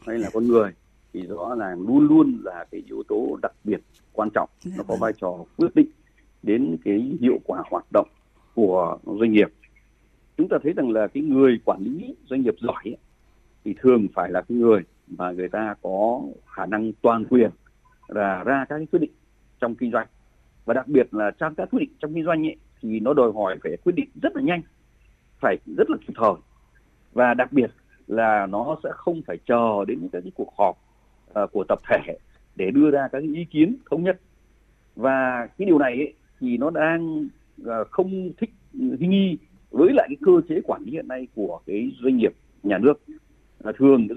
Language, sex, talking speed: Vietnamese, male, 205 wpm